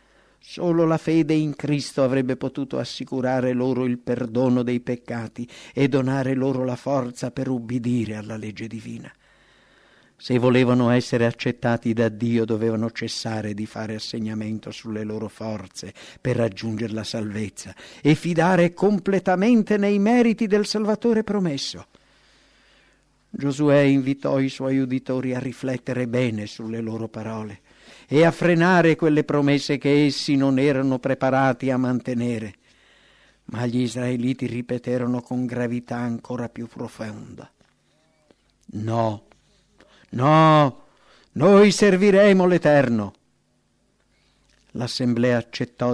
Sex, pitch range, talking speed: male, 115-145 Hz, 115 wpm